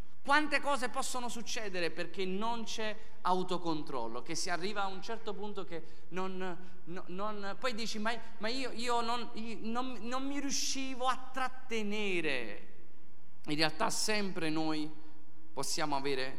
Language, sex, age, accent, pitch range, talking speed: Italian, male, 30-49, native, 170-235 Hz, 145 wpm